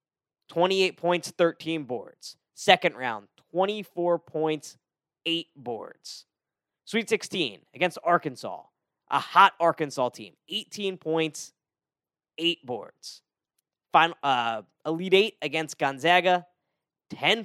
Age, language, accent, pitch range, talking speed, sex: 10-29, English, American, 140-175 Hz, 100 wpm, male